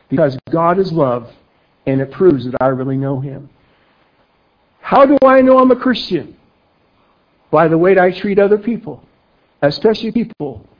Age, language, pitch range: 60-79, English, 135-190 Hz